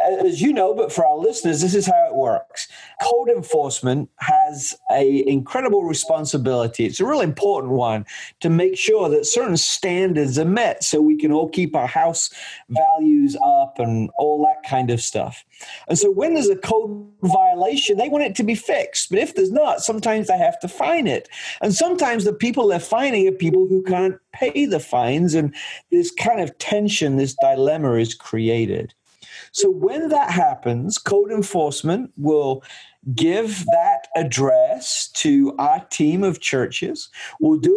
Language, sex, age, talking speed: English, male, 40-59, 170 wpm